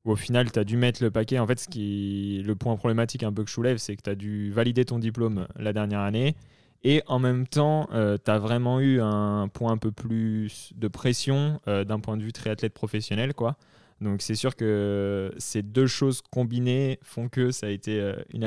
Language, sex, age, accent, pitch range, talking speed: French, male, 20-39, French, 105-125 Hz, 225 wpm